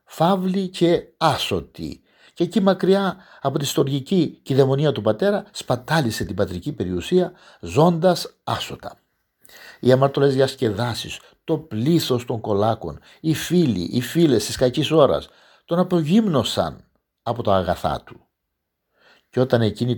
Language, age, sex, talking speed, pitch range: Greek, 50-69, male, 125 wpm, 105-170 Hz